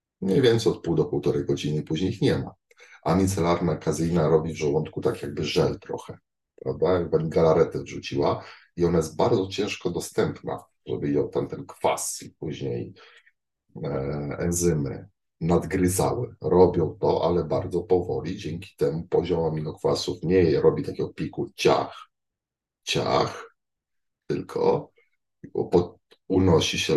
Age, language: 50-69, Polish